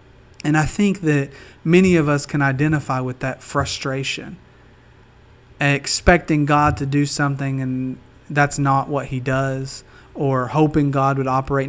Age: 30-49